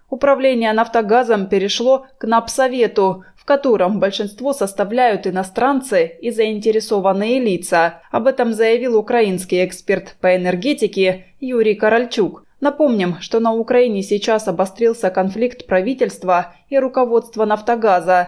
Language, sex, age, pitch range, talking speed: Russian, female, 20-39, 185-245 Hz, 110 wpm